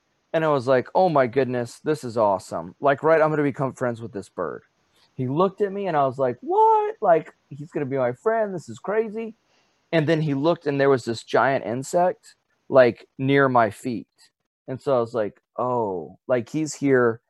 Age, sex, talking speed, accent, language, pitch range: 30-49, male, 215 wpm, American, English, 120-150 Hz